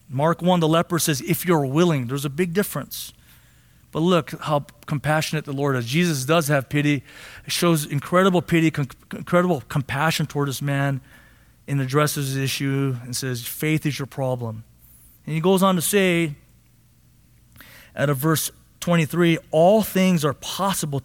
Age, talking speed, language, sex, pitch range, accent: 30-49, 165 wpm, English, male, 145-195 Hz, American